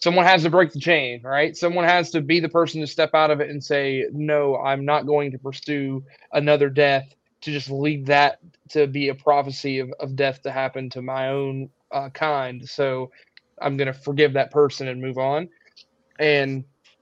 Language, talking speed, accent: English, 200 wpm, American